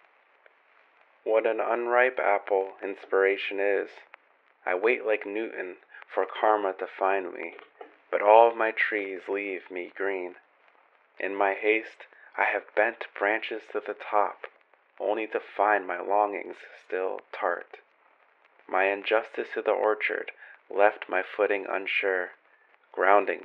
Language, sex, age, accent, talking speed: English, male, 30-49, American, 130 wpm